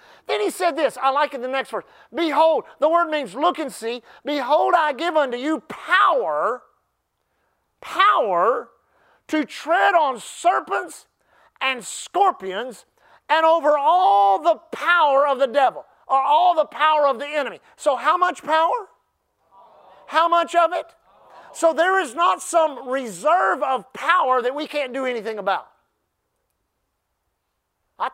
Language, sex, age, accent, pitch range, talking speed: English, male, 40-59, American, 245-320 Hz, 145 wpm